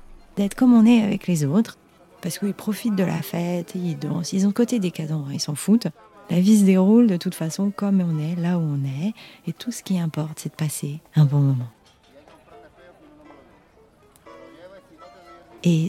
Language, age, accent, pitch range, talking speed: French, 30-49, French, 155-190 Hz, 195 wpm